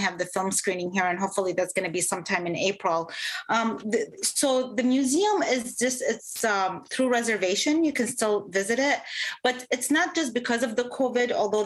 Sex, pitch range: female, 205-260 Hz